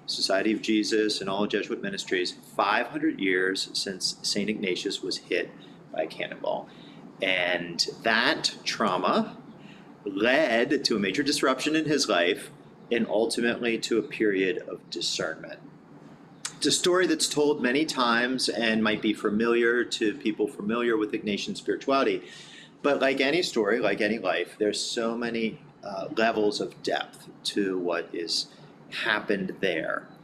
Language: English